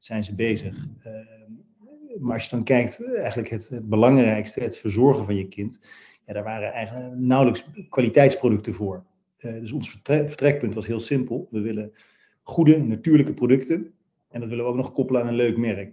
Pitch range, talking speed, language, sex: 110-125 Hz, 185 wpm, Dutch, male